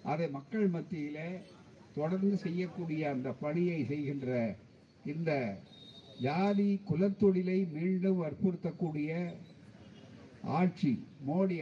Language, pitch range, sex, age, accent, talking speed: Tamil, 160-195 Hz, male, 60-79, native, 75 wpm